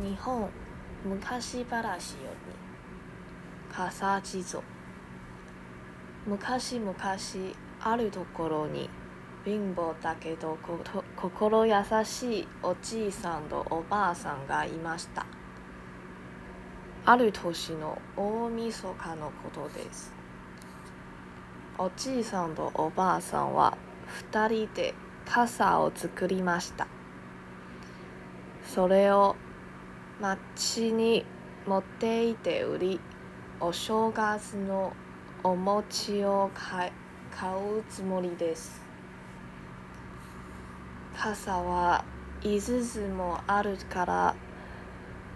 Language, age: Japanese, 20-39